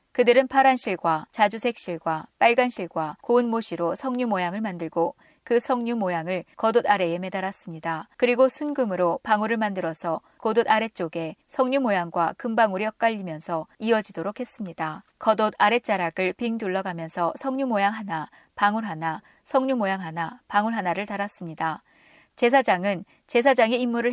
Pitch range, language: 175-230 Hz, Korean